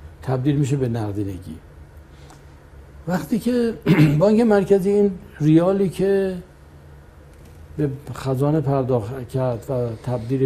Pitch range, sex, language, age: 115-170 Hz, male, Persian, 60-79